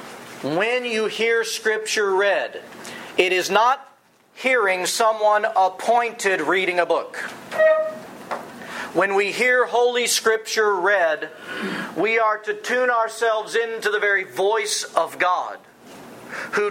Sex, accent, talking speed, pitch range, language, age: male, American, 115 wpm, 190-240 Hz, English, 40-59